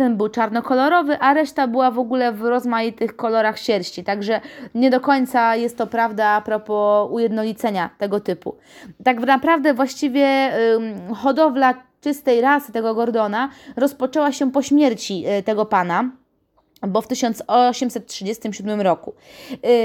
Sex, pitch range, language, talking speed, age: female, 215-260 Hz, Polish, 135 wpm, 20-39